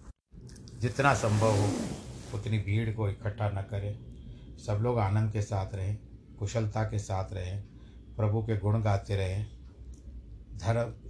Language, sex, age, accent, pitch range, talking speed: Hindi, male, 50-69, native, 100-110 Hz, 135 wpm